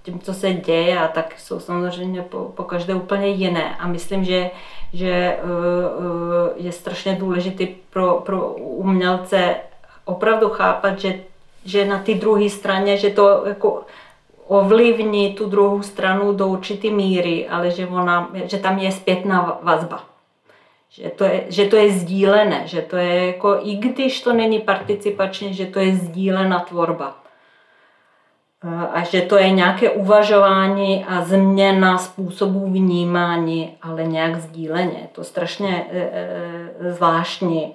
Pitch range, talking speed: 175-200 Hz, 140 wpm